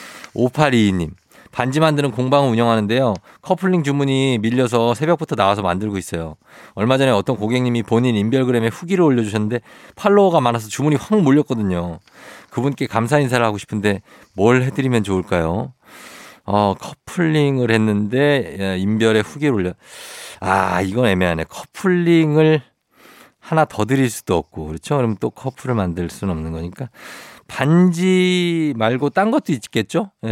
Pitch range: 105-155 Hz